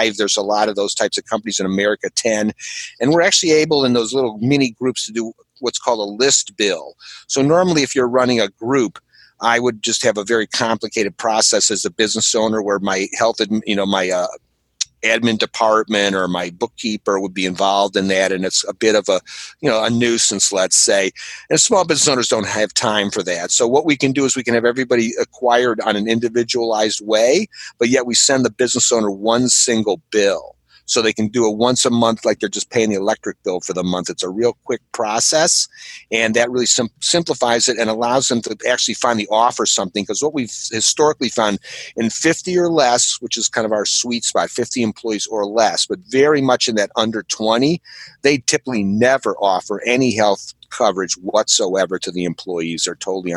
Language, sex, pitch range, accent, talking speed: English, male, 105-125 Hz, American, 210 wpm